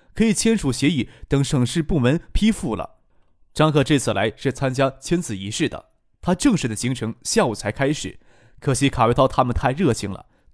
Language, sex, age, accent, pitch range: Chinese, male, 20-39, native, 115-170 Hz